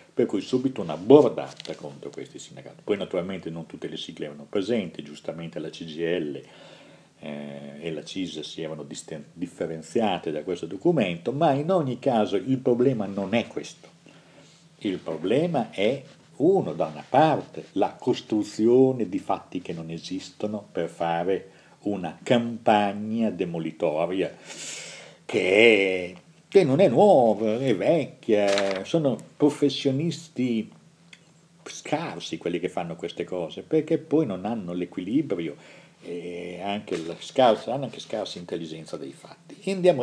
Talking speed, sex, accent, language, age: 135 wpm, male, native, Italian, 50-69